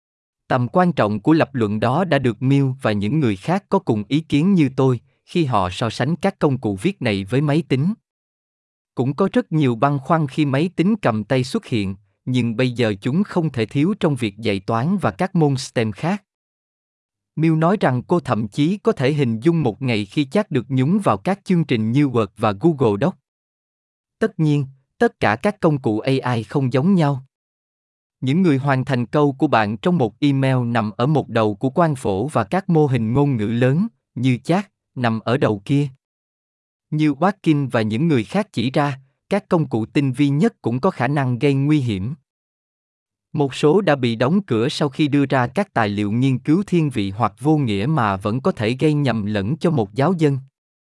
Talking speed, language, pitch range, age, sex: 210 wpm, Vietnamese, 115-160 Hz, 20-39, male